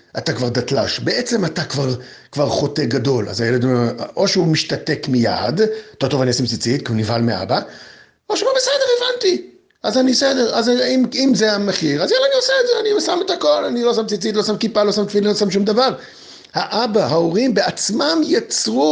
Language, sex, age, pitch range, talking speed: Hebrew, male, 50-69, 165-245 Hz, 210 wpm